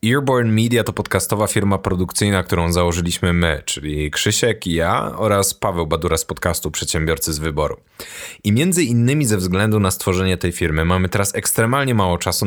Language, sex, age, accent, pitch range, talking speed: Polish, male, 20-39, native, 85-105 Hz, 170 wpm